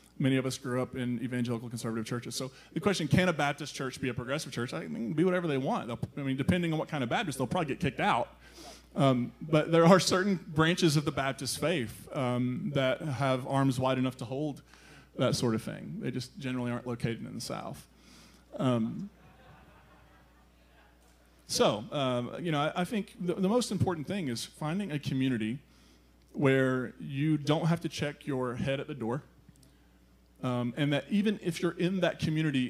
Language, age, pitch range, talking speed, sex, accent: English, 30-49, 120-155 Hz, 195 wpm, male, American